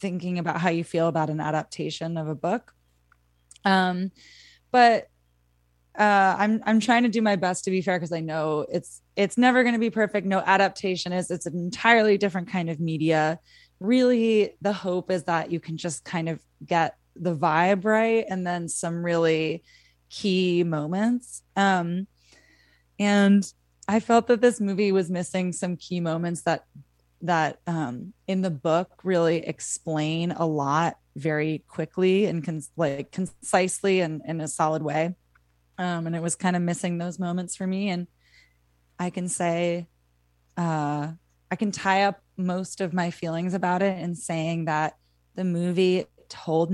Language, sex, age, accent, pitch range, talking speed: English, female, 20-39, American, 155-190 Hz, 165 wpm